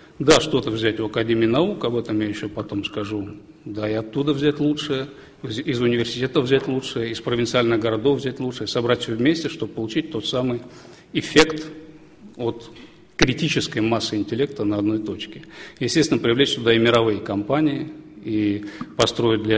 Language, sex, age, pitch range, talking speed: English, male, 40-59, 105-130 Hz, 155 wpm